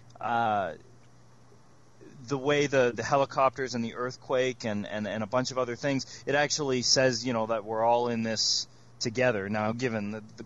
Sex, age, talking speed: male, 30-49, 185 wpm